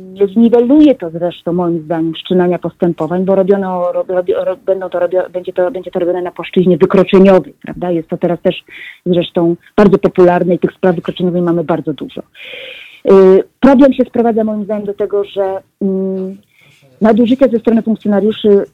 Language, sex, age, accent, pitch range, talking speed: Polish, female, 30-49, native, 185-225 Hz, 160 wpm